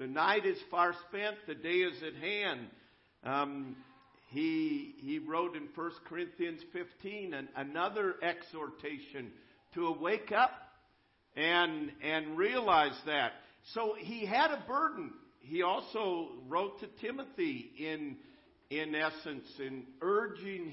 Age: 50-69